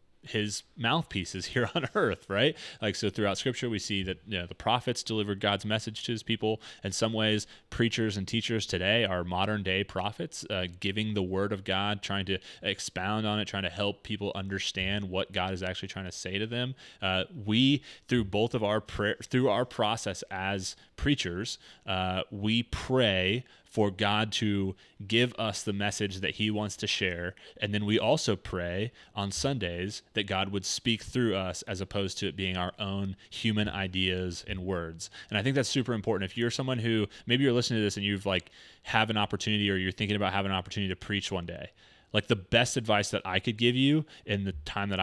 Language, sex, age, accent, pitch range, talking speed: English, male, 20-39, American, 95-110 Hz, 205 wpm